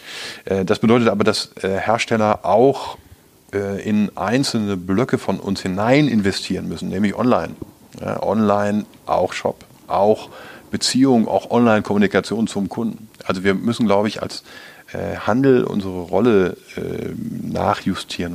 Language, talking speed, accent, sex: German, 115 wpm, German, male